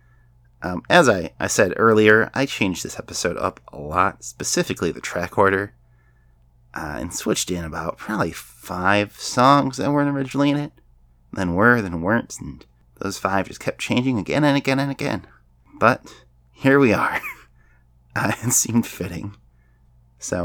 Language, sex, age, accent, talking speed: English, male, 30-49, American, 160 wpm